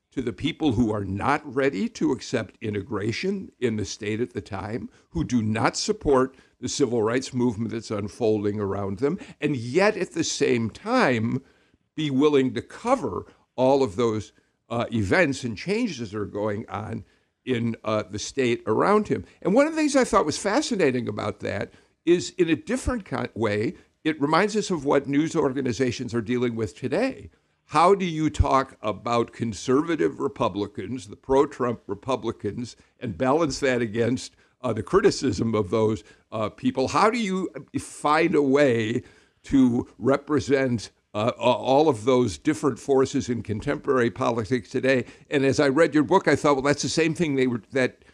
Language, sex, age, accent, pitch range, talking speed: English, male, 60-79, American, 115-145 Hz, 170 wpm